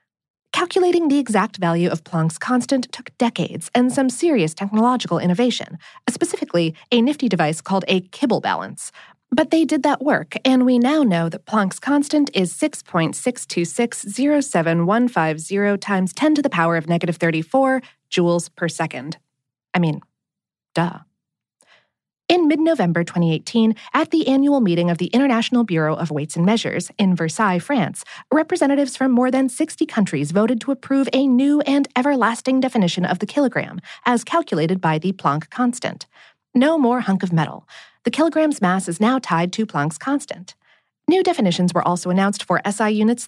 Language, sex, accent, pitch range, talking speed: English, female, American, 175-265 Hz, 155 wpm